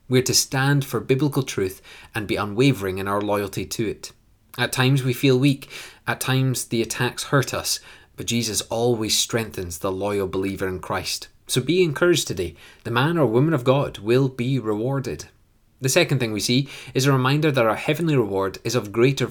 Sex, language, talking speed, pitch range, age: male, English, 195 wpm, 105-140 Hz, 20-39